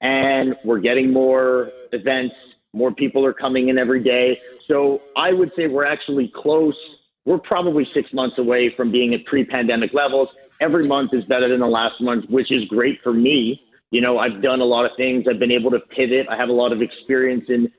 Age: 40-59